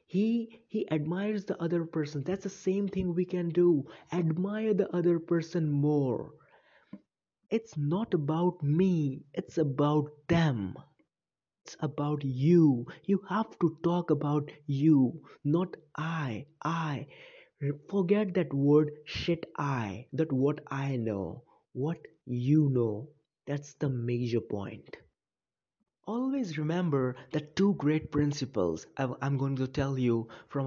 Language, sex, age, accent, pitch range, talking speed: English, male, 30-49, Indian, 125-170 Hz, 125 wpm